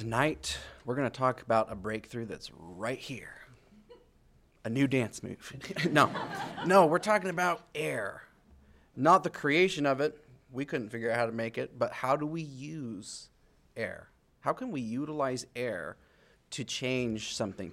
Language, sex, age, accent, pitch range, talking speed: English, male, 30-49, American, 110-135 Hz, 165 wpm